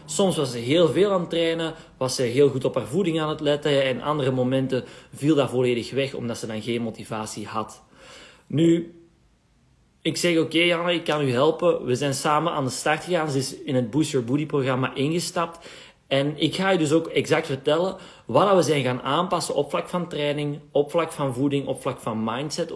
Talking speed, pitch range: 220 wpm, 130-170 Hz